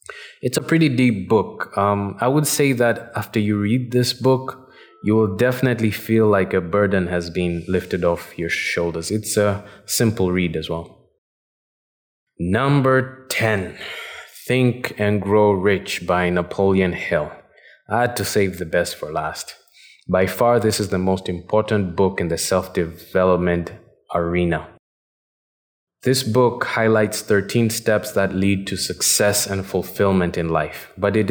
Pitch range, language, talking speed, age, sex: 95-115 Hz, English, 150 wpm, 20-39, male